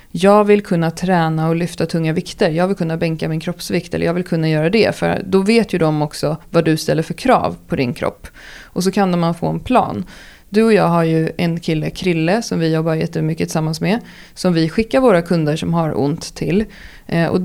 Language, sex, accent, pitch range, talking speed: Swedish, female, native, 165-210 Hz, 225 wpm